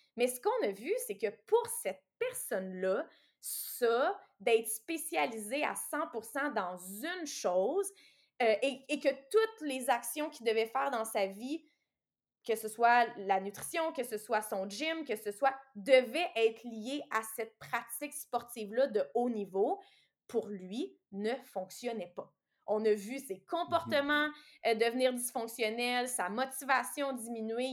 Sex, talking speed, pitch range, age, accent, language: female, 150 wpm, 215-300 Hz, 20-39, Canadian, French